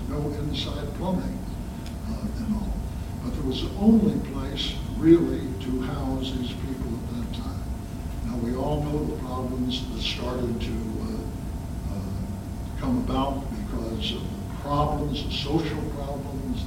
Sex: male